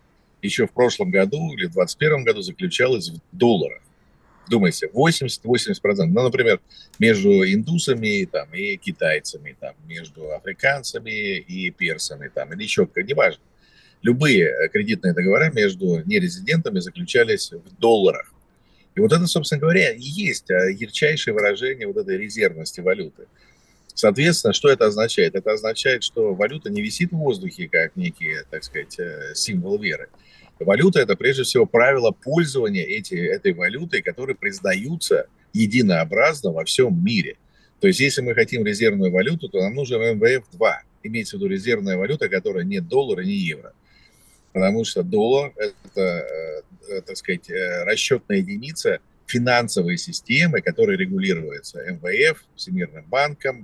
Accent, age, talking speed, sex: native, 50-69, 135 wpm, male